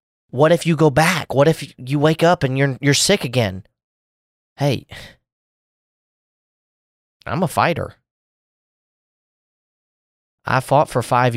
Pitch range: 105-140 Hz